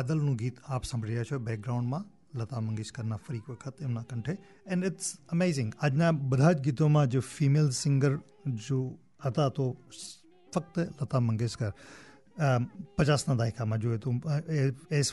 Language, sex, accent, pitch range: English, male, Indian, 125-165 Hz